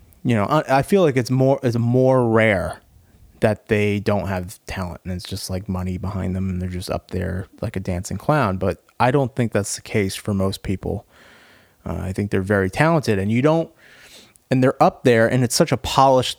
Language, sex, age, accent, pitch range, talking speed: English, male, 30-49, American, 100-130 Hz, 215 wpm